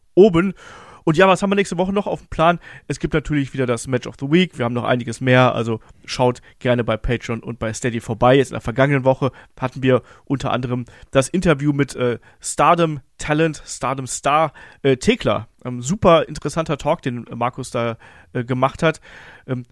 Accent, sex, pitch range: German, male, 130-175 Hz